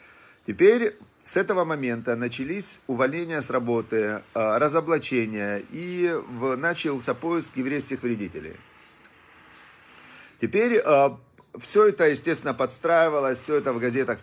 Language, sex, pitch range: Russian, male, 125-160 Hz